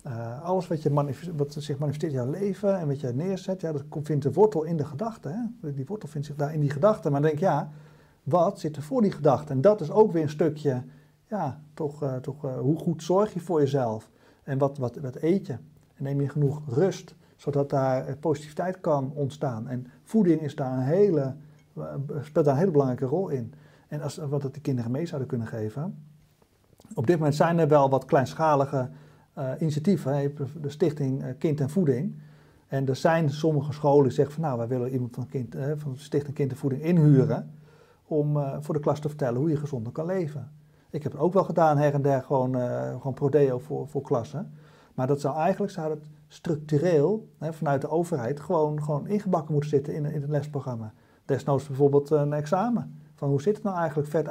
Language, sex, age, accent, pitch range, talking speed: Dutch, male, 50-69, Dutch, 140-160 Hz, 215 wpm